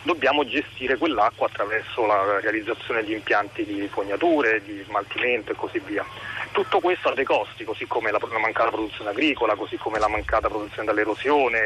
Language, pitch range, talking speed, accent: Italian, 120-155 Hz, 165 wpm, native